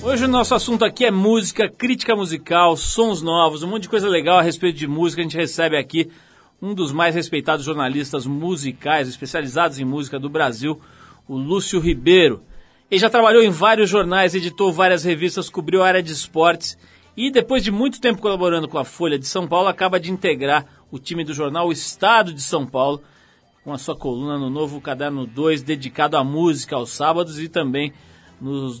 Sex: male